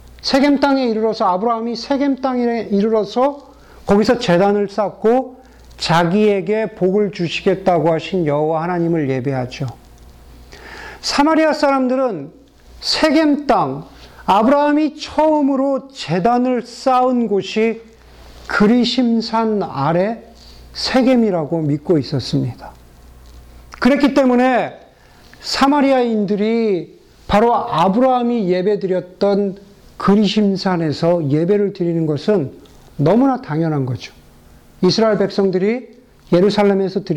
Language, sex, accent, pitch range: Korean, male, native, 170-245 Hz